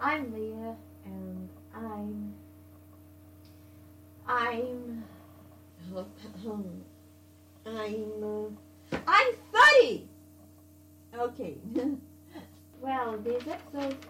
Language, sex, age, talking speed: English, female, 30-49, 50 wpm